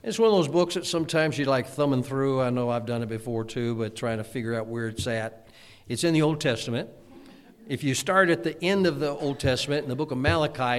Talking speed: 255 wpm